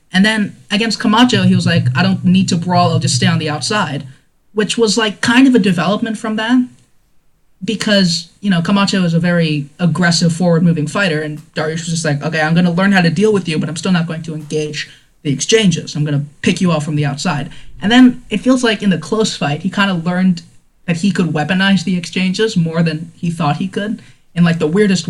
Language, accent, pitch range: English, American, 155-200 Hz